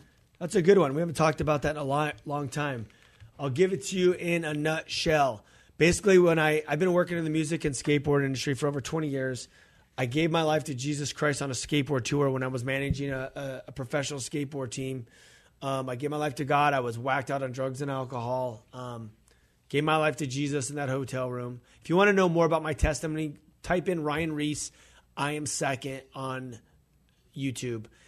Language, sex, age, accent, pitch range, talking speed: English, male, 30-49, American, 130-155 Hz, 220 wpm